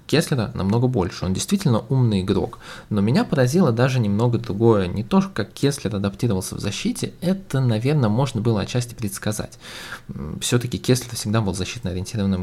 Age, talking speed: 20-39, 150 wpm